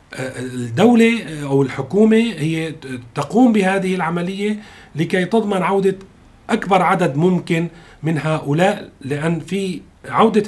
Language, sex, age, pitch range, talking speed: Arabic, male, 40-59, 135-175 Hz, 105 wpm